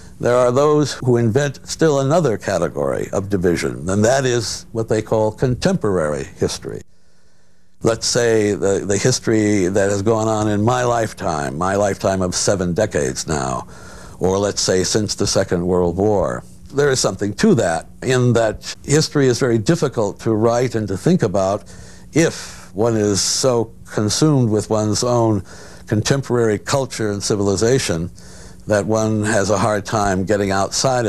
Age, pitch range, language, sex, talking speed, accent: 60-79, 95-125 Hz, English, male, 155 wpm, American